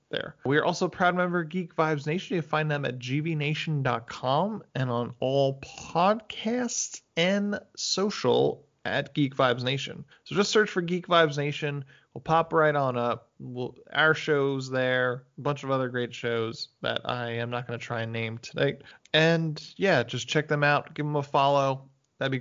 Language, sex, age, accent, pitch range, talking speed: English, male, 20-39, American, 125-160 Hz, 190 wpm